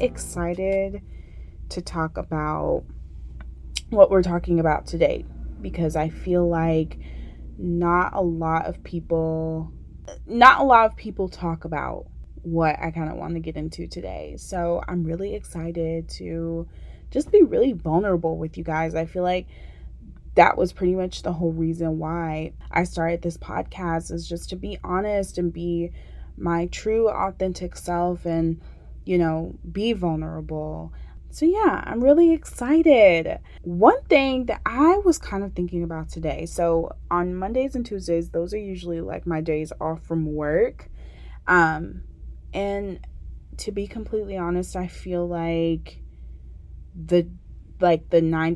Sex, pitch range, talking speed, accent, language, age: female, 155-180 Hz, 145 wpm, American, English, 20-39